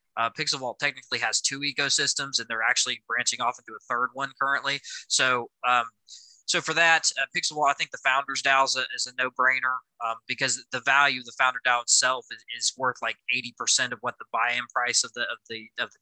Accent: American